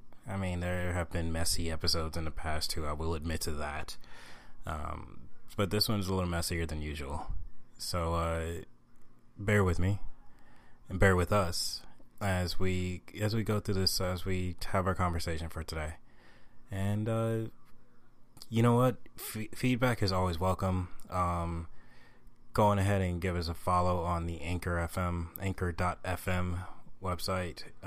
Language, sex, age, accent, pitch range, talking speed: English, male, 20-39, American, 85-100 Hz, 165 wpm